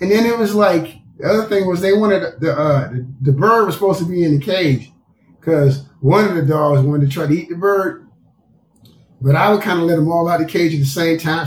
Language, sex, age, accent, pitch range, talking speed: English, male, 30-49, American, 155-220 Hz, 265 wpm